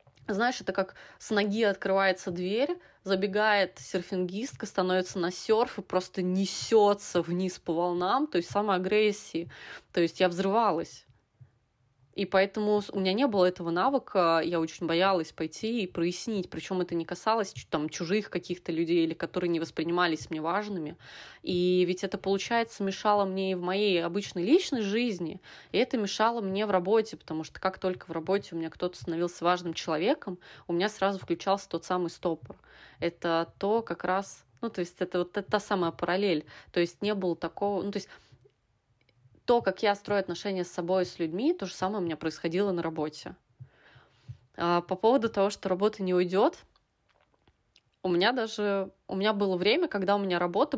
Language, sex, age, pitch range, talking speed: Russian, female, 20-39, 170-200 Hz, 175 wpm